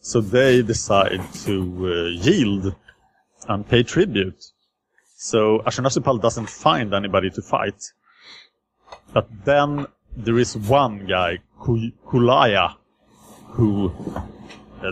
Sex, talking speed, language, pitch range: male, 100 wpm, English, 95-115 Hz